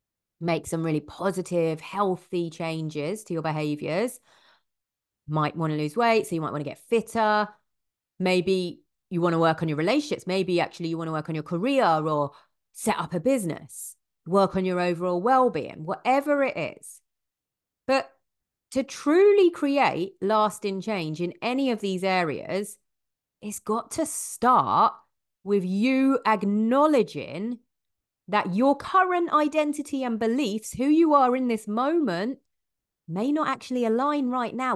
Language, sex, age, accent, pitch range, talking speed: English, female, 30-49, British, 170-255 Hz, 150 wpm